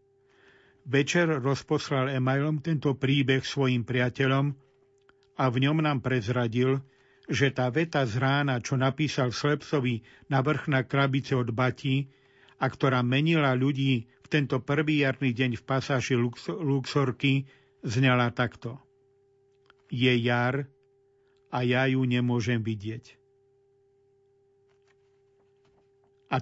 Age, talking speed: 50-69, 110 wpm